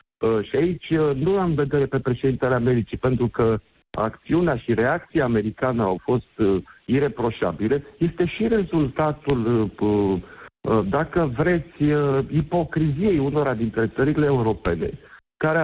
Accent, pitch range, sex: native, 115-155 Hz, male